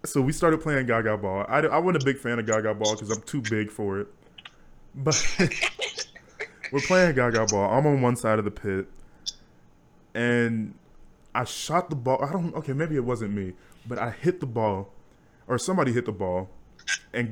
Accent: American